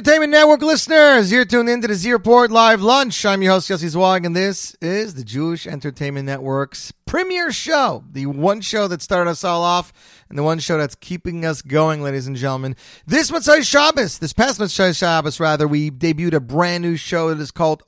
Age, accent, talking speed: 30-49, American, 205 wpm